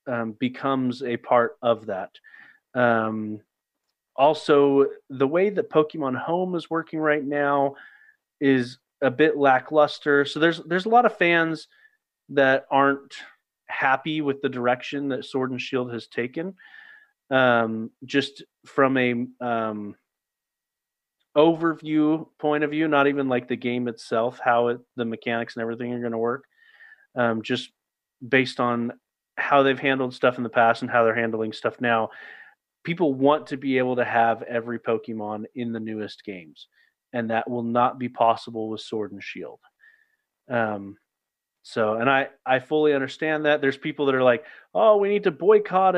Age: 30-49